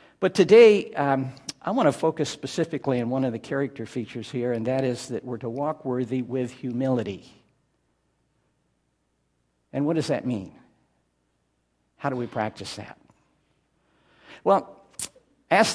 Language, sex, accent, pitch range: English, male, American, 115-150 Hz